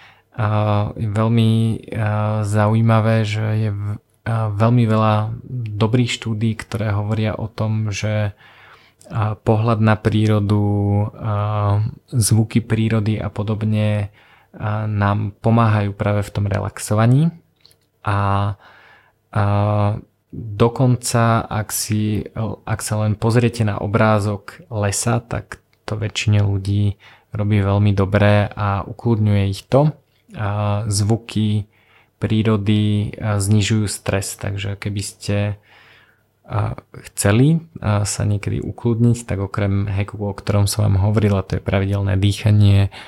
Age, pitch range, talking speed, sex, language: 20-39, 105-115 Hz, 105 wpm, male, Slovak